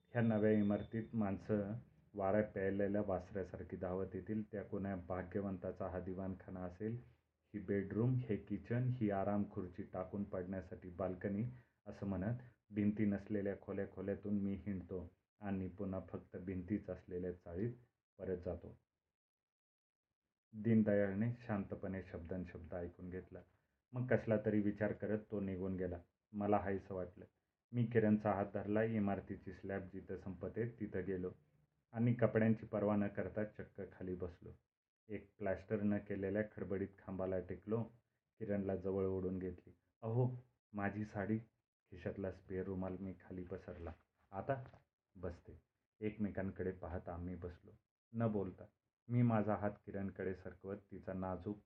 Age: 30-49